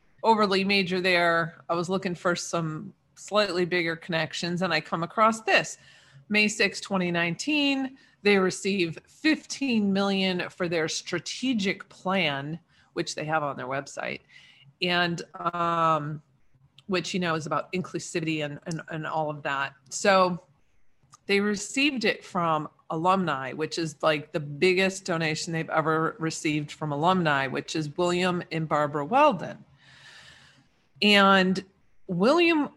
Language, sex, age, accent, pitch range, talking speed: English, female, 40-59, American, 160-205 Hz, 130 wpm